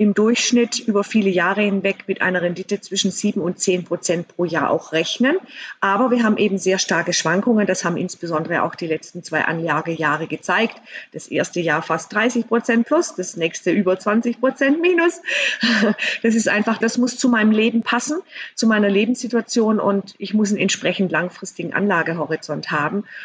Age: 40-59